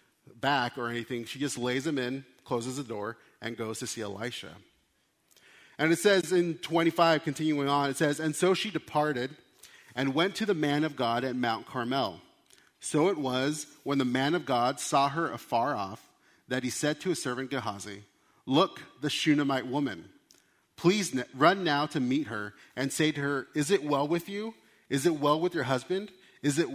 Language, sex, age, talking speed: English, male, 30-49, 190 wpm